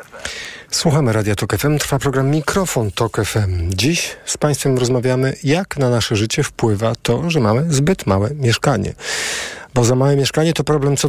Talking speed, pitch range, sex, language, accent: 160 wpm, 115-140 Hz, male, Polish, native